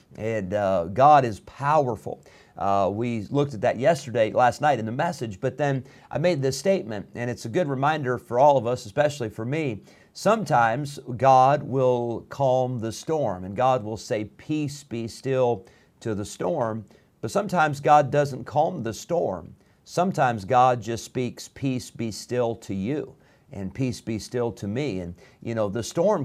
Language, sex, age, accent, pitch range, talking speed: English, male, 50-69, American, 115-150 Hz, 175 wpm